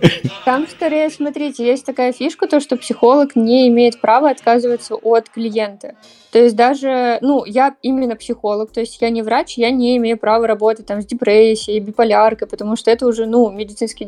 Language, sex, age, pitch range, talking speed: Russian, female, 20-39, 215-245 Hz, 180 wpm